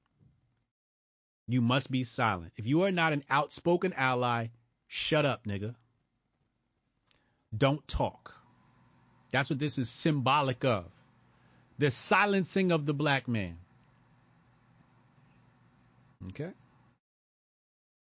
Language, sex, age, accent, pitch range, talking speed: English, male, 30-49, American, 125-170 Hz, 95 wpm